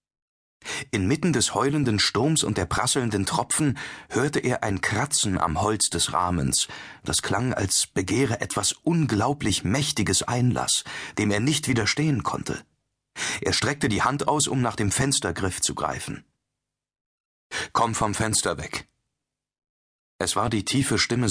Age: 40-59